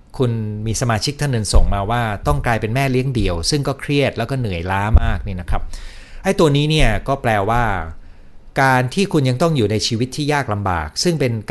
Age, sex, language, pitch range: 60-79, male, Thai, 100-140 Hz